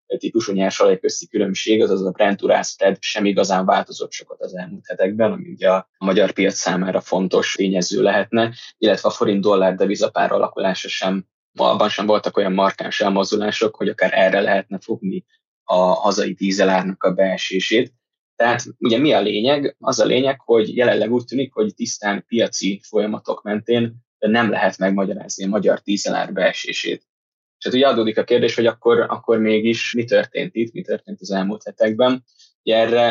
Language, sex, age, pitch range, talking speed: Hungarian, male, 20-39, 95-130 Hz, 160 wpm